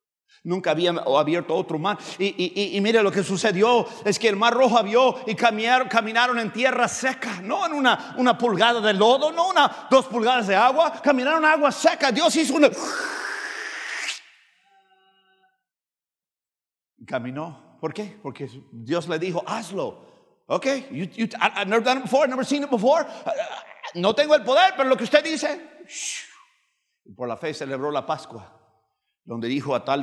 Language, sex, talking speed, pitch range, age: English, male, 180 wpm, 150-250 Hz, 50-69